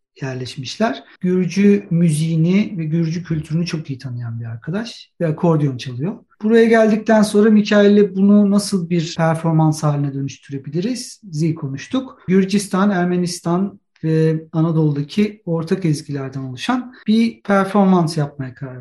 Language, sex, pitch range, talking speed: Turkish, male, 155-195 Hz, 120 wpm